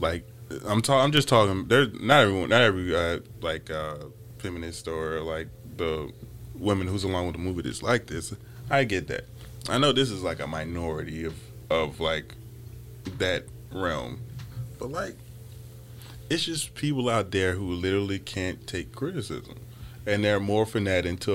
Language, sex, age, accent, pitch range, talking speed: English, male, 20-39, American, 100-125 Hz, 165 wpm